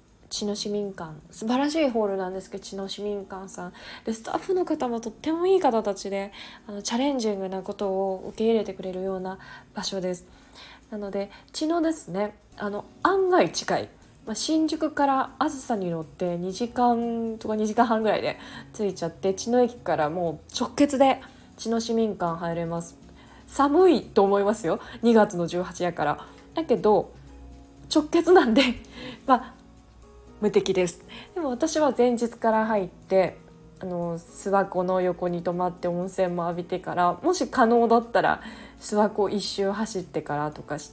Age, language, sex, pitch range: 20-39, Japanese, female, 175-235 Hz